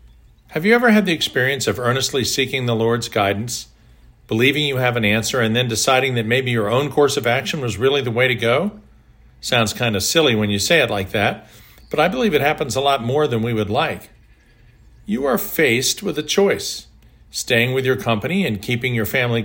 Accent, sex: American, male